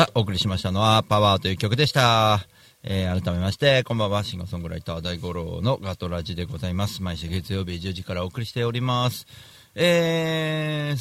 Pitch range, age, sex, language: 90-115 Hz, 40-59, male, Japanese